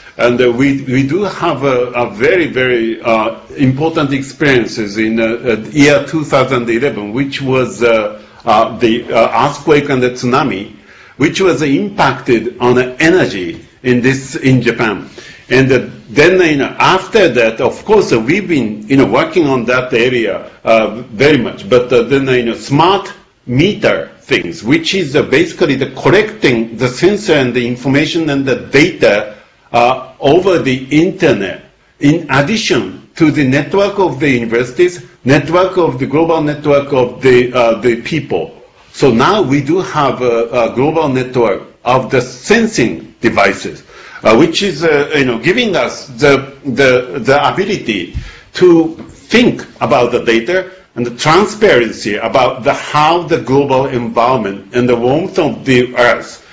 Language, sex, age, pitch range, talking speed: English, male, 60-79, 120-150 Hz, 160 wpm